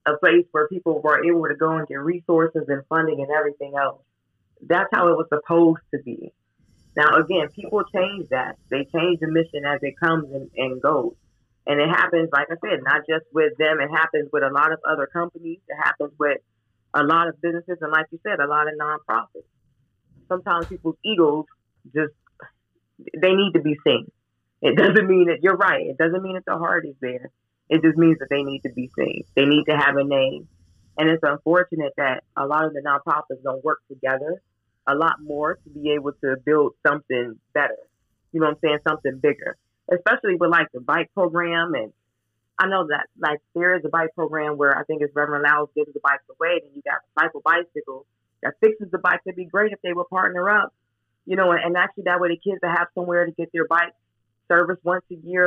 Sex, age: female, 20-39